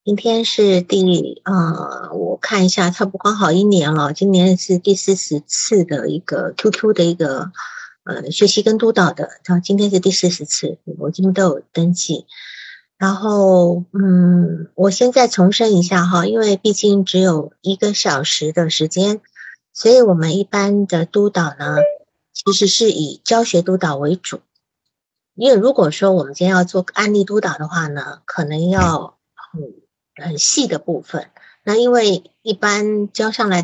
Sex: female